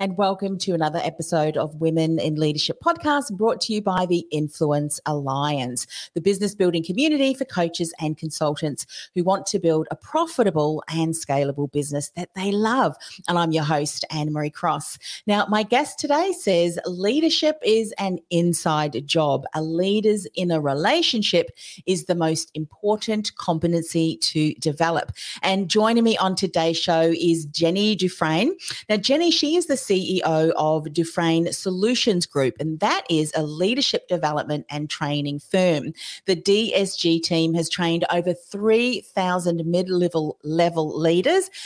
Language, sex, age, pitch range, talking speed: English, female, 40-59, 155-200 Hz, 145 wpm